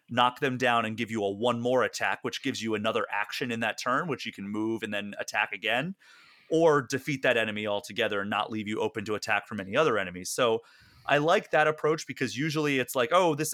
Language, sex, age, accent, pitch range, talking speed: English, male, 30-49, American, 115-140 Hz, 235 wpm